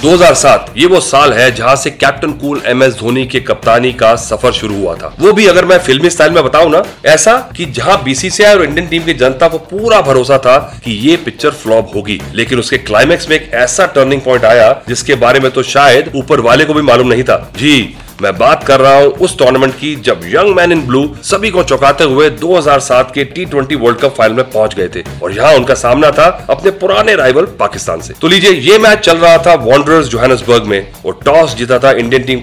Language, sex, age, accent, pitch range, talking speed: Hindi, male, 30-49, native, 125-165 Hz, 220 wpm